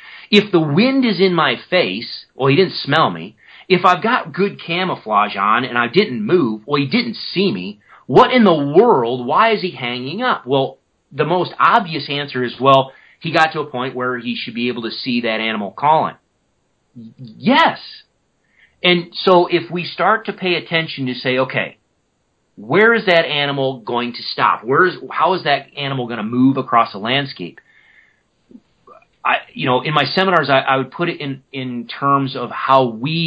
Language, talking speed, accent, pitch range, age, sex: English, 195 wpm, American, 130-180 Hz, 30-49, male